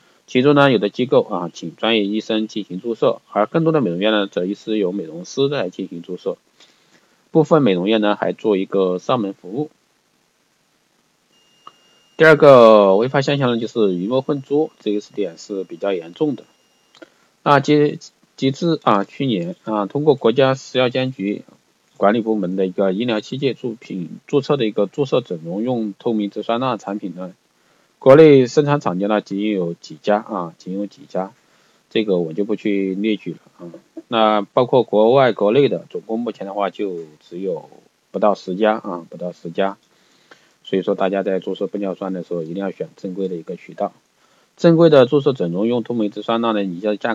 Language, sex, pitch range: Chinese, male, 95-130 Hz